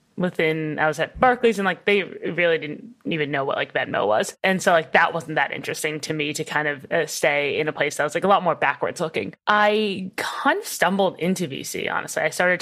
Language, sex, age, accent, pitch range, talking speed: English, female, 20-39, American, 155-195 Hz, 235 wpm